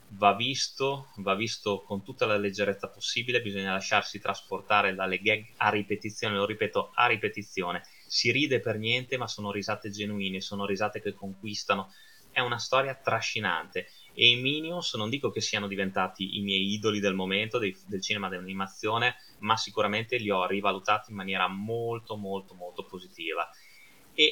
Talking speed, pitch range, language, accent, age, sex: 160 wpm, 100-120 Hz, Italian, native, 20-39, male